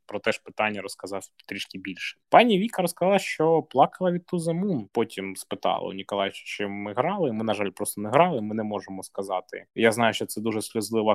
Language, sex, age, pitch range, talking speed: Ukrainian, male, 20-39, 105-170 Hz, 200 wpm